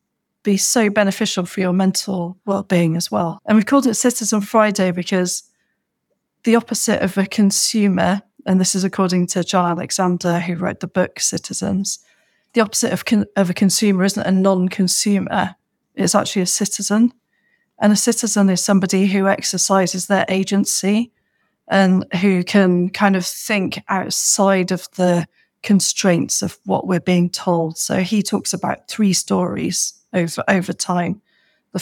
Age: 40-59